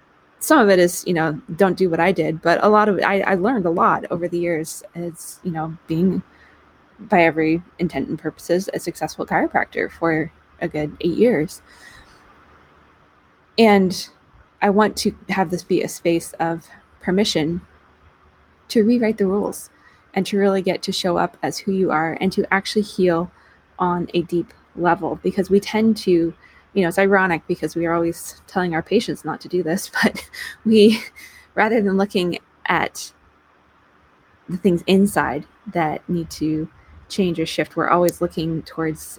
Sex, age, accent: female, 20-39, American